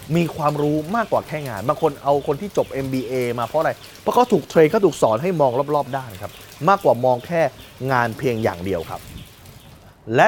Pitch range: 120-165 Hz